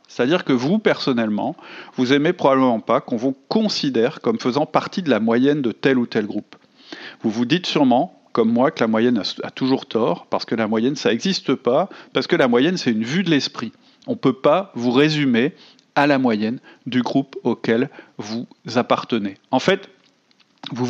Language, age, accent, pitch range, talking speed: French, 40-59, French, 120-155 Hz, 190 wpm